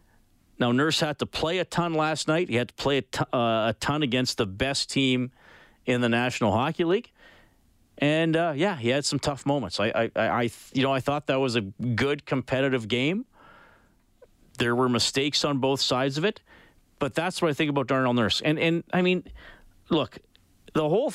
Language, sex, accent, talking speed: English, male, American, 200 wpm